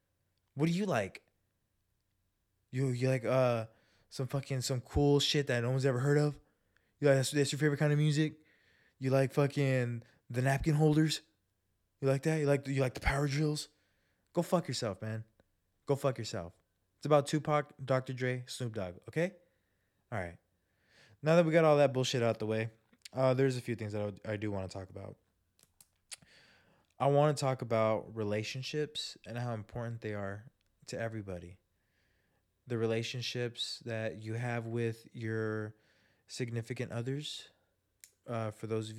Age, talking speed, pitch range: 20-39, 170 wpm, 100-135 Hz